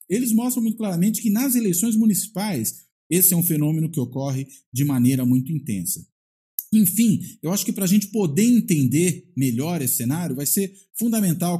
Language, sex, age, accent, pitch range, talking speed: Portuguese, male, 50-69, Brazilian, 135-185 Hz, 170 wpm